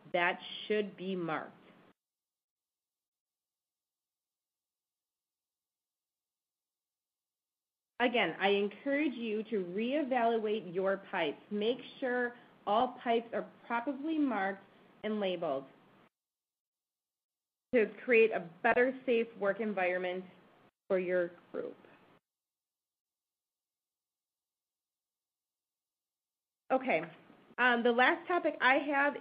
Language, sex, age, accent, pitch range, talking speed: English, female, 30-49, American, 195-250 Hz, 80 wpm